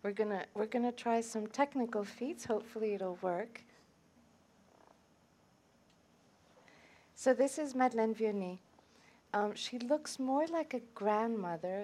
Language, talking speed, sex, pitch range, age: English, 115 wpm, female, 190-230 Hz, 40-59